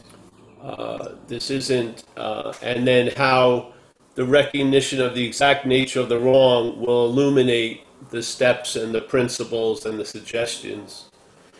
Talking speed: 135 wpm